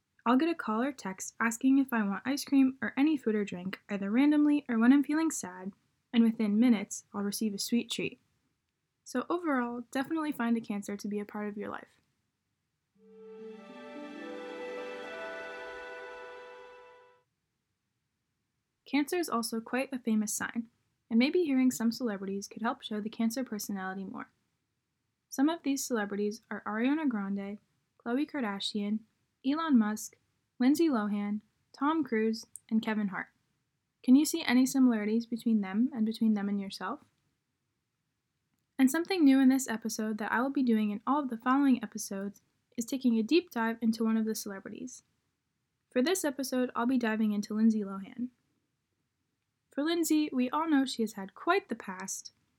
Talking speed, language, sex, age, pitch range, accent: 160 wpm, English, female, 10-29, 210-265 Hz, American